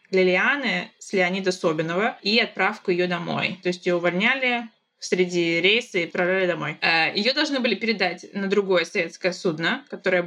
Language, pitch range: Russian, 180-215 Hz